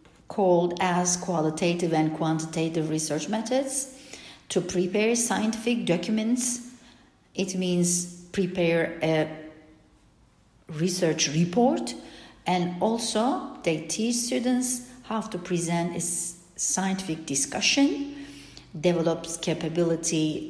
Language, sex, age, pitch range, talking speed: Turkish, female, 50-69, 160-225 Hz, 90 wpm